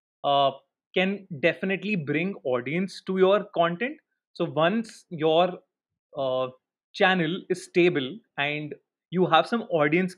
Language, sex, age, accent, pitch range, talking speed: English, male, 30-49, Indian, 155-200 Hz, 120 wpm